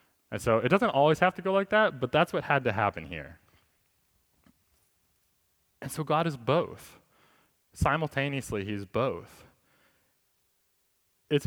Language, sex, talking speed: English, male, 135 wpm